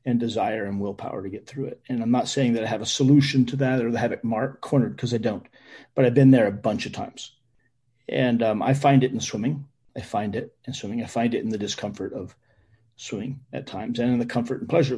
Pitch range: 110-130 Hz